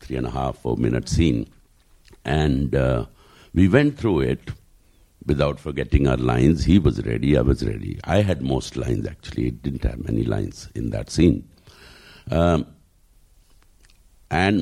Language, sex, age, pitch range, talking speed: English, male, 60-79, 80-105 Hz, 140 wpm